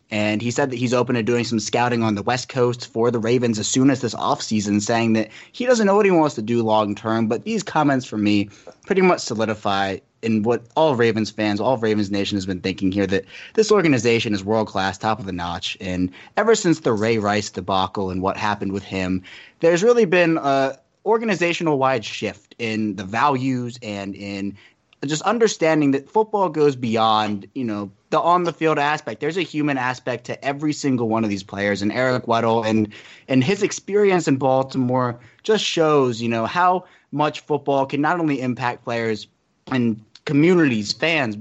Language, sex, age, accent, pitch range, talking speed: English, male, 20-39, American, 105-150 Hz, 195 wpm